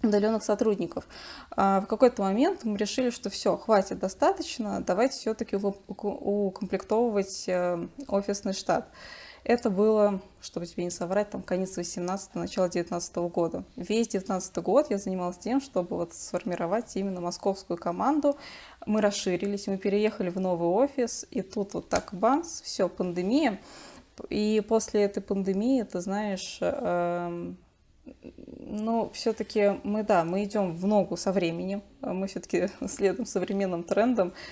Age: 20-39